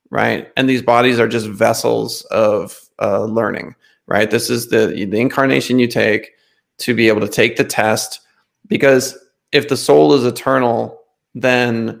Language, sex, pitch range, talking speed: English, male, 115-140 Hz, 160 wpm